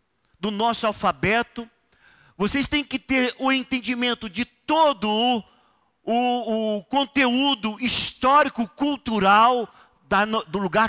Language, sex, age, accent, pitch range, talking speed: Portuguese, male, 40-59, Brazilian, 220-280 Hz, 100 wpm